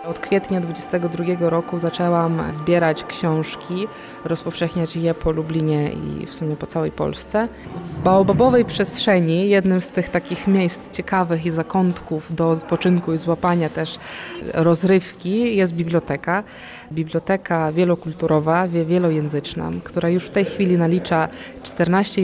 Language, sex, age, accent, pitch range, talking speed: Polish, female, 20-39, native, 165-190 Hz, 125 wpm